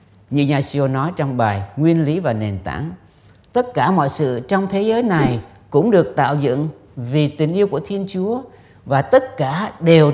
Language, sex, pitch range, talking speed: Vietnamese, male, 120-190 Hz, 195 wpm